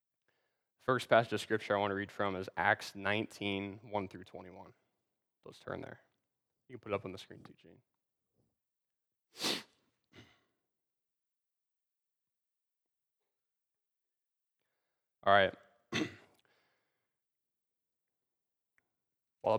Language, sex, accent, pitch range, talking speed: English, male, American, 95-120 Hz, 95 wpm